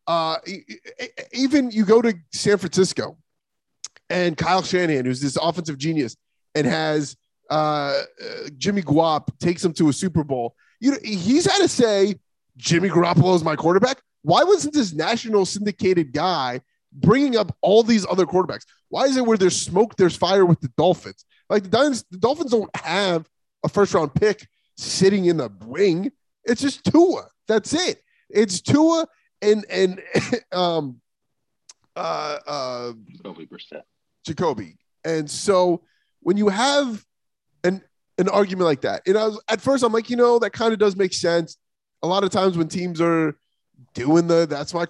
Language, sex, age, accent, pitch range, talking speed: English, male, 30-49, American, 160-215 Hz, 165 wpm